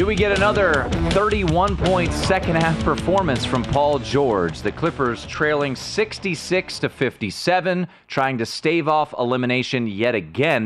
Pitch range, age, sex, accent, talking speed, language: 100-135 Hz, 30-49, male, American, 130 wpm, English